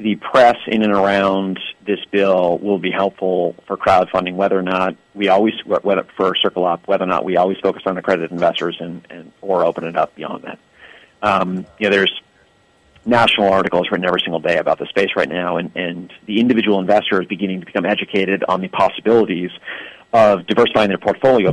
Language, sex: English, male